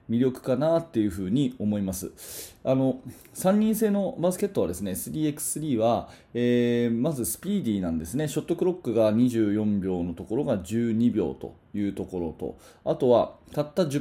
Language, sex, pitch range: Japanese, male, 105-155 Hz